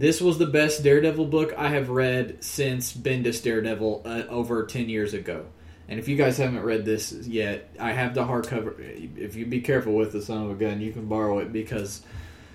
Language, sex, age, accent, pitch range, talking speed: English, male, 20-39, American, 110-130 Hz, 210 wpm